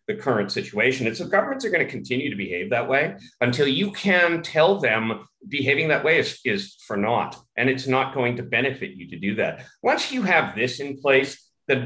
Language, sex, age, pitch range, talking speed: English, male, 40-59, 115-170 Hz, 225 wpm